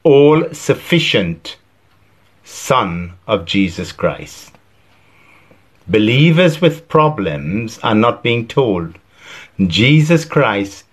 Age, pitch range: 50-69, 95-125 Hz